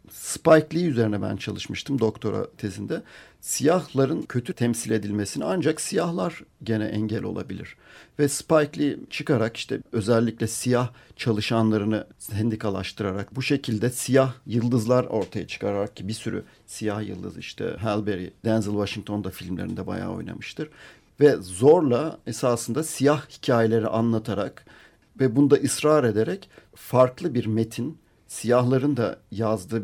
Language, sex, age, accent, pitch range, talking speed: Turkish, male, 50-69, native, 110-135 Hz, 120 wpm